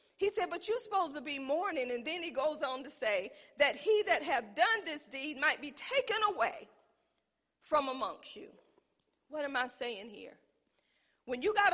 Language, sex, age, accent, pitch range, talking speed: English, female, 40-59, American, 250-330 Hz, 190 wpm